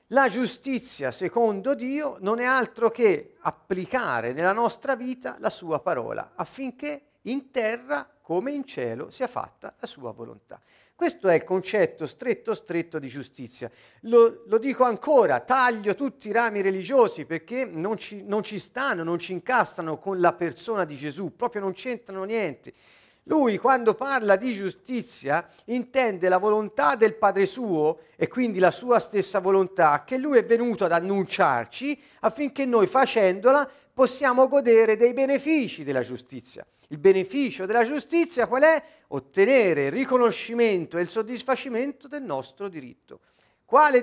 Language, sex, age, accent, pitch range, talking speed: Italian, male, 50-69, native, 190-265 Hz, 145 wpm